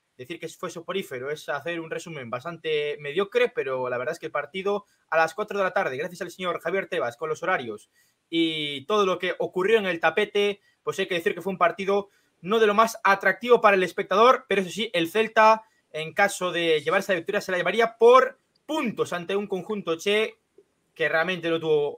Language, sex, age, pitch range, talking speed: Spanish, male, 30-49, 180-235 Hz, 215 wpm